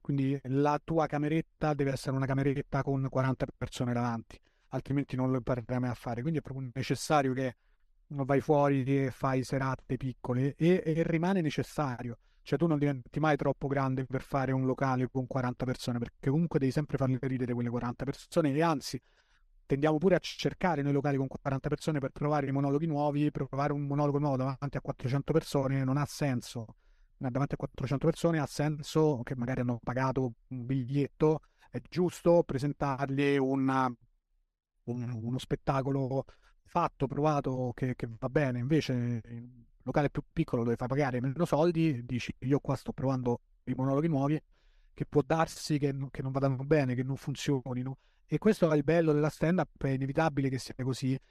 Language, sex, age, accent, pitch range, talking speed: Italian, male, 30-49, native, 130-150 Hz, 180 wpm